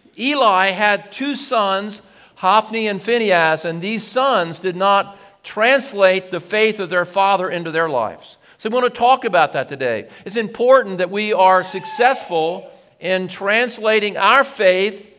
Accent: American